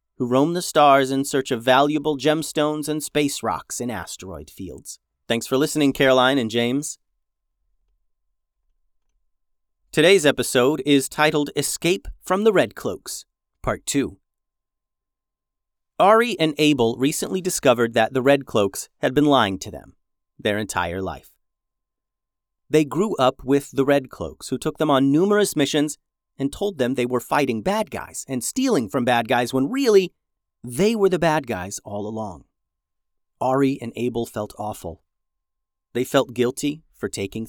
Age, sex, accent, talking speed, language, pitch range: 30-49, male, American, 150 wpm, English, 100-145 Hz